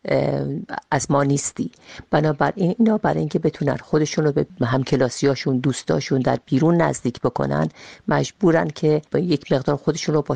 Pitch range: 125-150 Hz